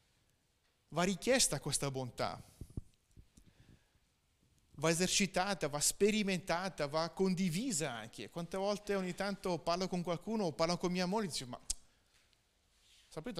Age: 30-49